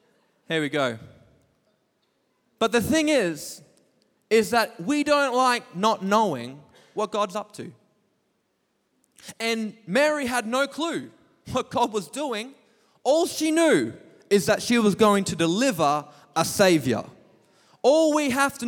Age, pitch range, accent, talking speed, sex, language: 20-39, 190-280 Hz, Australian, 140 wpm, male, English